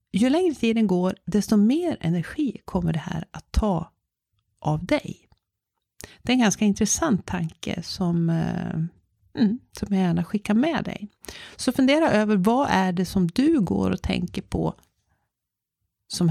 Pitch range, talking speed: 170-230 Hz, 155 wpm